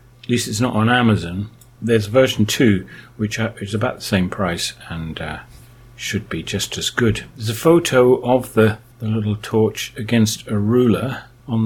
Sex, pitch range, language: male, 105-120 Hz, English